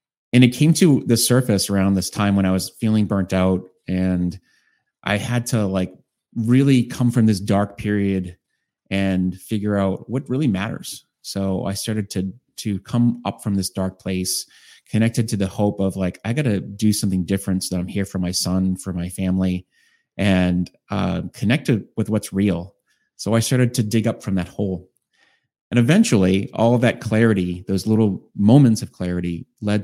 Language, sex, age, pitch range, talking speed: English, male, 30-49, 95-110 Hz, 185 wpm